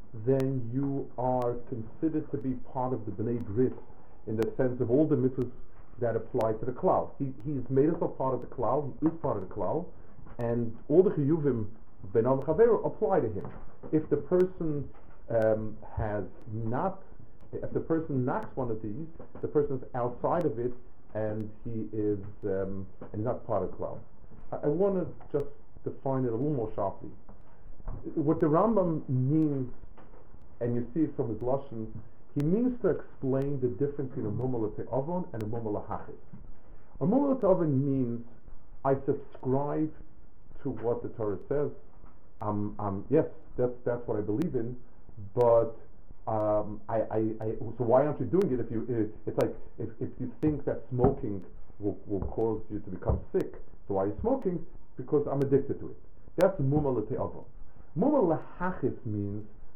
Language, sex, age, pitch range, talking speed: English, male, 50-69, 110-145 Hz, 175 wpm